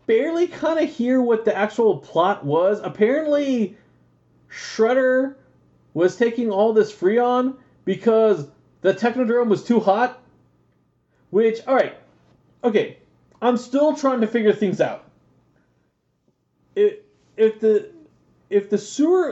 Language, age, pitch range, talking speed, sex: English, 30-49, 160-255 Hz, 110 wpm, male